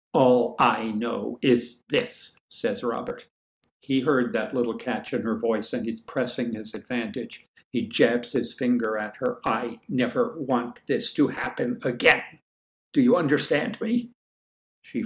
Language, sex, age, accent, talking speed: English, male, 60-79, American, 150 wpm